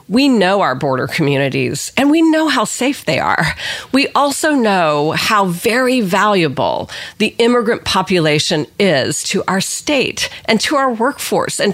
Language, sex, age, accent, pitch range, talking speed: English, female, 40-59, American, 170-220 Hz, 155 wpm